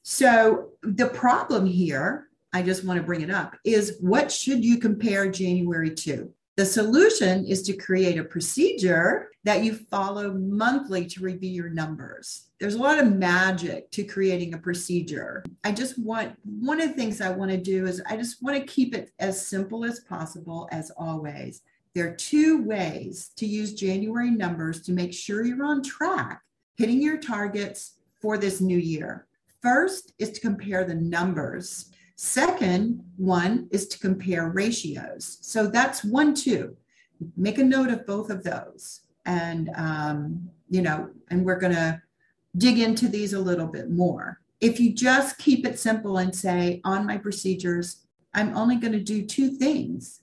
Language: English